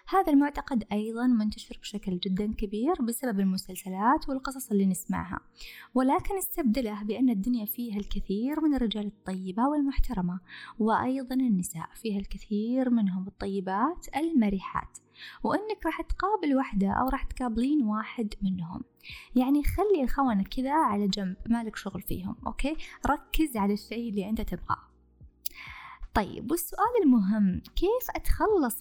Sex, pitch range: female, 200-280 Hz